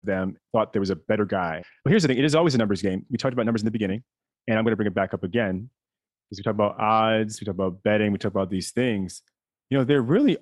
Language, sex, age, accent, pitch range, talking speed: English, male, 30-49, American, 95-115 Hz, 295 wpm